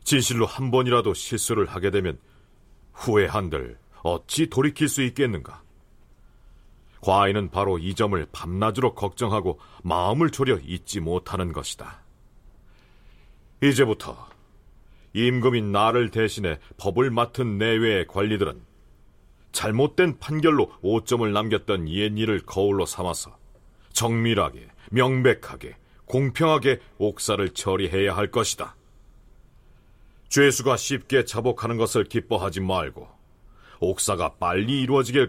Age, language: 40-59, Korean